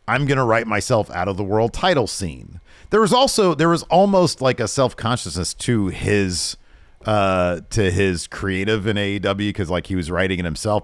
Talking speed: 200 wpm